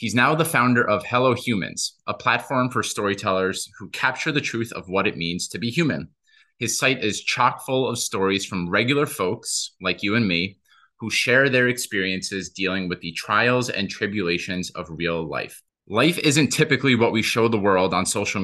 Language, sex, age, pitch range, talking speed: English, male, 30-49, 95-120 Hz, 190 wpm